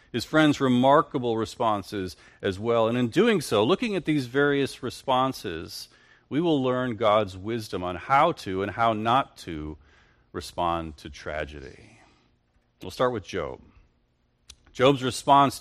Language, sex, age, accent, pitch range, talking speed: English, male, 40-59, American, 90-120 Hz, 140 wpm